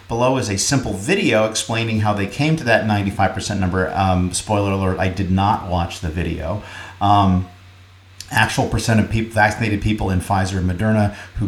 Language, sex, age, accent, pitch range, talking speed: English, male, 40-59, American, 95-115 Hz, 180 wpm